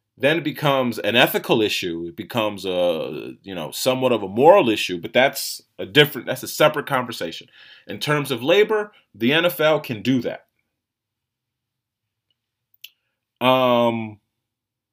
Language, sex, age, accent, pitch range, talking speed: English, male, 30-49, American, 110-150 Hz, 135 wpm